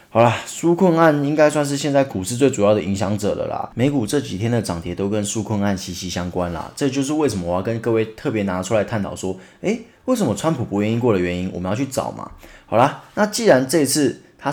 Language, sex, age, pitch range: Chinese, male, 20-39, 95-135 Hz